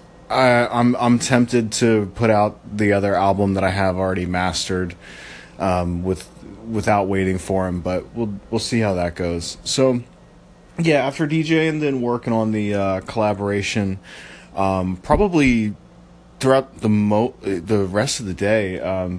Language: English